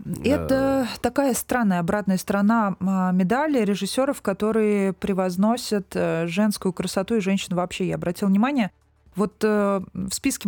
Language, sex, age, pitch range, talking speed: Russian, female, 20-39, 185-225 Hz, 115 wpm